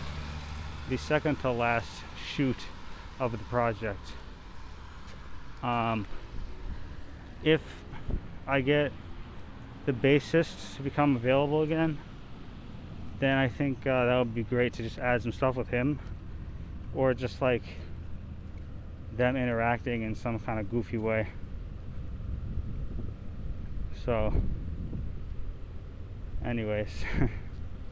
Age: 20-39